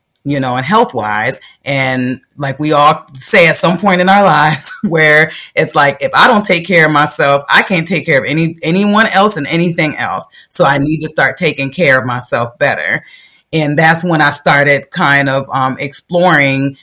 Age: 30-49